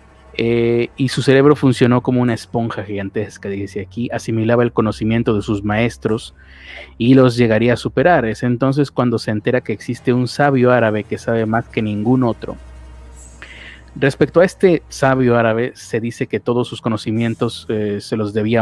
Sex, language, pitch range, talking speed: male, Spanish, 95-125 Hz, 170 wpm